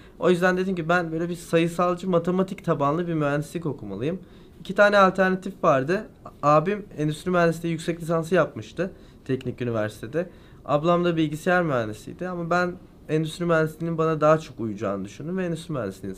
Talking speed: 150 wpm